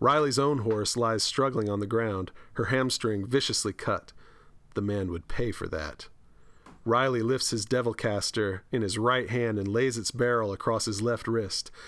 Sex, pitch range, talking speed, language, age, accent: male, 105-130 Hz, 175 wpm, English, 40-59, American